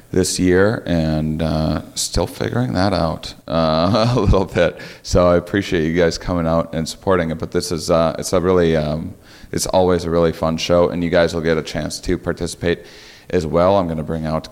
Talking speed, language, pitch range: 220 wpm, English, 80-95 Hz